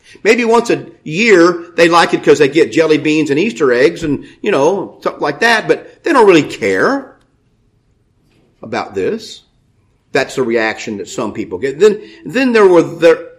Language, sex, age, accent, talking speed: English, male, 50-69, American, 180 wpm